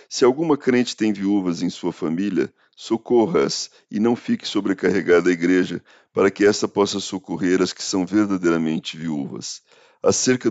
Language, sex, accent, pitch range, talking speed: Portuguese, male, Brazilian, 90-105 Hz, 150 wpm